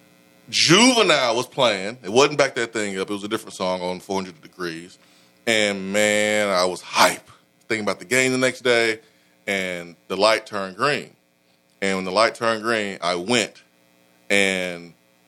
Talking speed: 170 wpm